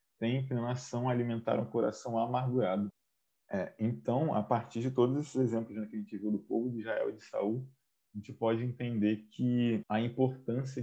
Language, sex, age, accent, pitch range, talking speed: Portuguese, male, 20-39, Brazilian, 110-130 Hz, 175 wpm